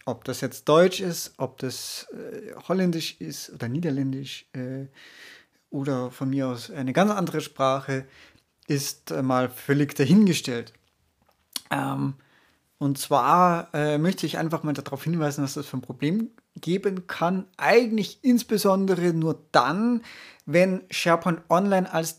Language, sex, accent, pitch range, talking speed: German, male, German, 135-180 Hz, 140 wpm